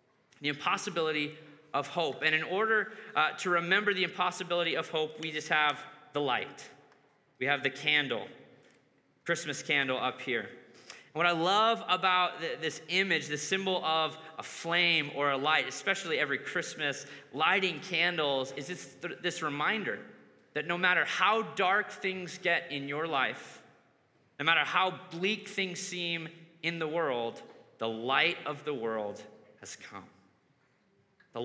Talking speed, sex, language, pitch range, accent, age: 150 wpm, male, English, 150-190 Hz, American, 30-49